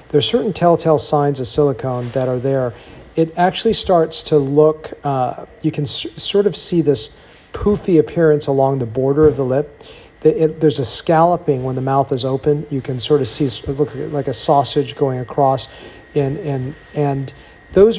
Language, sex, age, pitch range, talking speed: English, male, 40-59, 125-155 Hz, 190 wpm